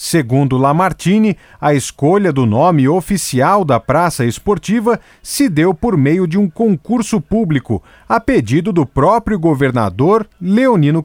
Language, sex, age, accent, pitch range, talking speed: Portuguese, male, 40-59, Brazilian, 140-215 Hz, 130 wpm